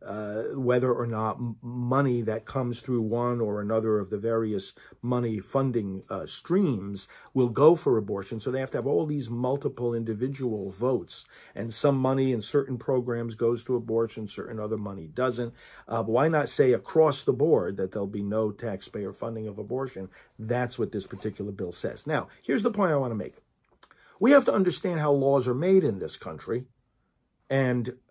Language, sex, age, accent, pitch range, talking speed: English, male, 50-69, American, 110-140 Hz, 185 wpm